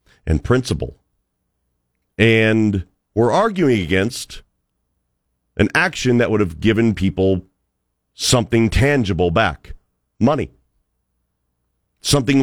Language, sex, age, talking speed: English, male, 40-59, 85 wpm